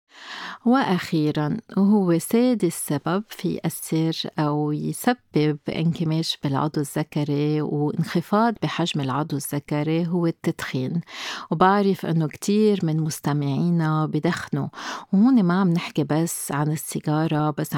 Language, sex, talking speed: Arabic, female, 105 wpm